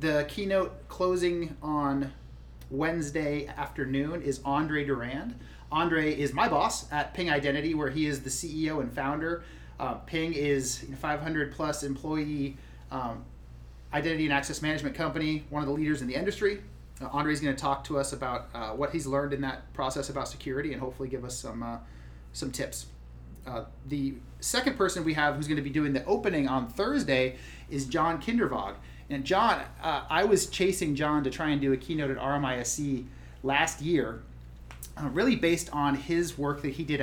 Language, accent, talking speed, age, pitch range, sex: English, American, 180 wpm, 30-49, 130-155 Hz, male